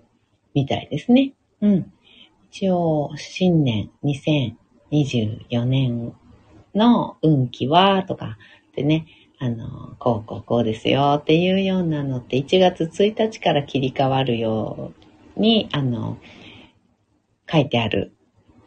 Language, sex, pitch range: Japanese, female, 120-170 Hz